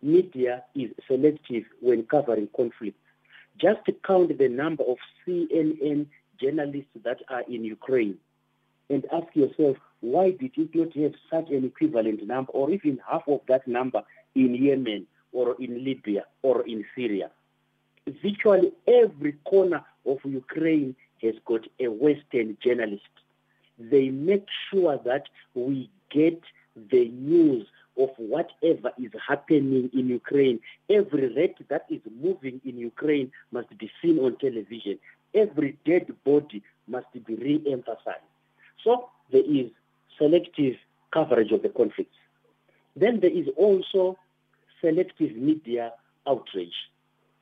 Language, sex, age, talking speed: English, male, 50-69, 125 wpm